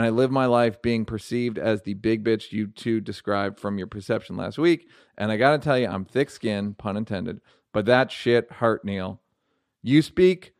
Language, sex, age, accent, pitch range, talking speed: English, male, 40-59, American, 110-145 Hz, 205 wpm